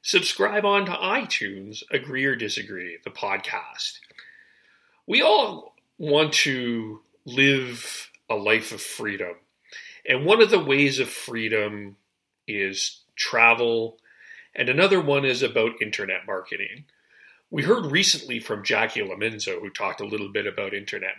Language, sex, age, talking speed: English, male, 40-59, 135 wpm